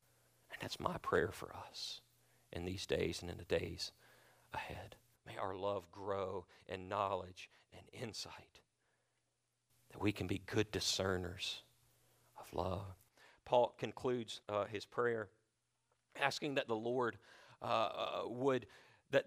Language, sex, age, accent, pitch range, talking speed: English, male, 40-59, American, 115-165 Hz, 130 wpm